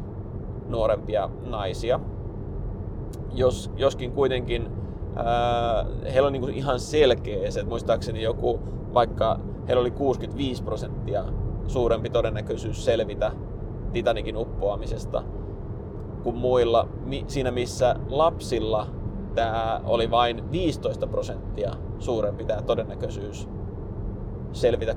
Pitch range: 105-120 Hz